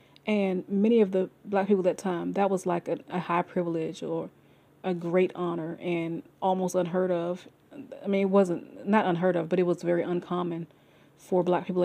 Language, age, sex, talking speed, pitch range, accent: English, 30-49, female, 200 wpm, 175-190 Hz, American